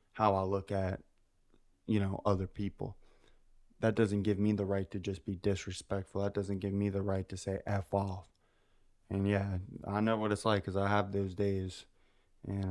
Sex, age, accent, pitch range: male, 20-39, American, 95-105 Hz